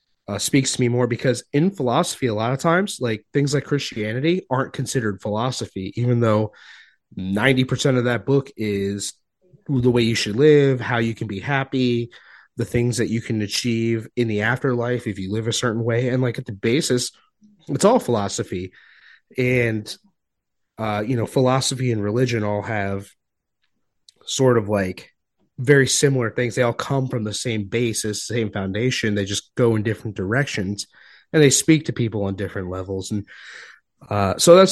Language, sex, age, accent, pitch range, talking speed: English, male, 30-49, American, 110-135 Hz, 175 wpm